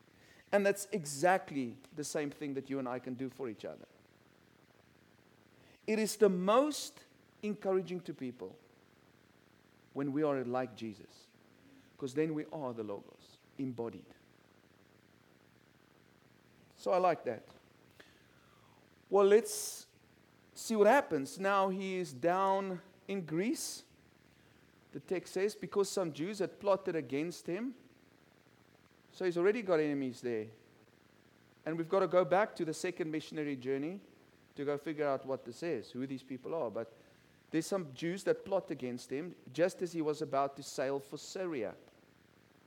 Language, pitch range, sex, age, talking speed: English, 145-200 Hz, male, 40-59, 145 wpm